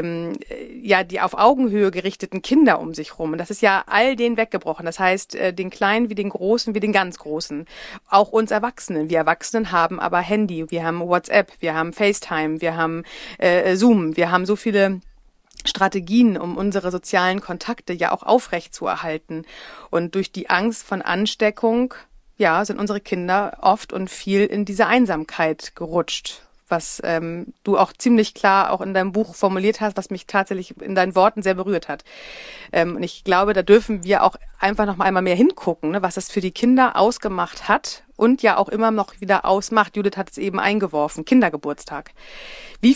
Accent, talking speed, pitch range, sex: German, 185 wpm, 170-215 Hz, female